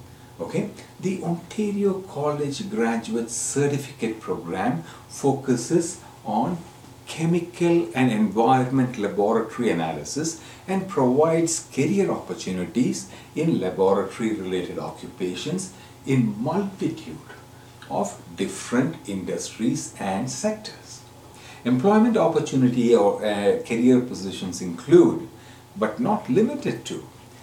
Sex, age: male, 60-79